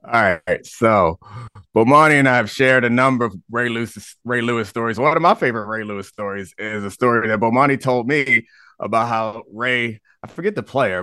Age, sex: 30-49, male